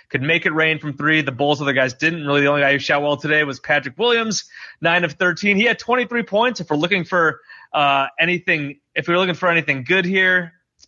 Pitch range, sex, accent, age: 140-175 Hz, male, American, 30-49